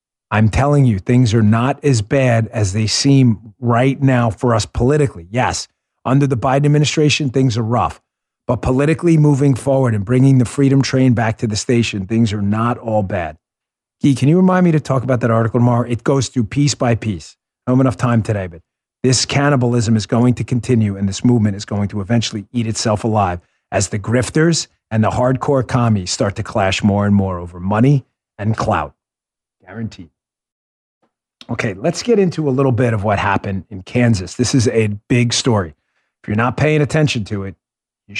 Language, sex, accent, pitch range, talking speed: English, male, American, 105-135 Hz, 195 wpm